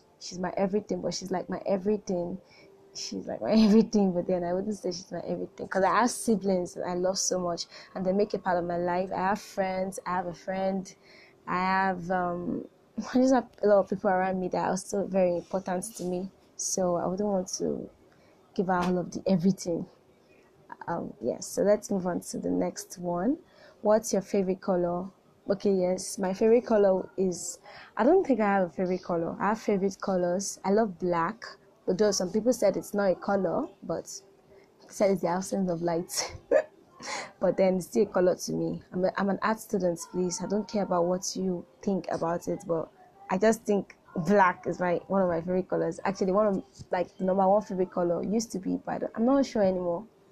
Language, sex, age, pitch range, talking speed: English, female, 20-39, 180-205 Hz, 215 wpm